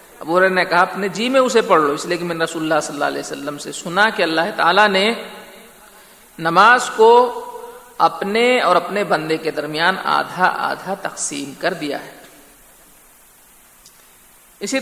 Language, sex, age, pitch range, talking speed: Urdu, male, 50-69, 170-215 Hz, 160 wpm